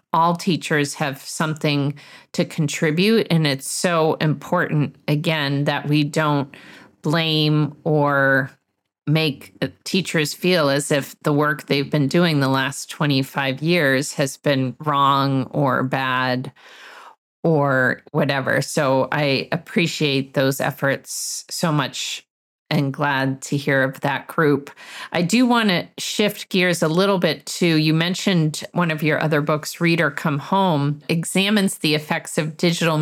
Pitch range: 140-170 Hz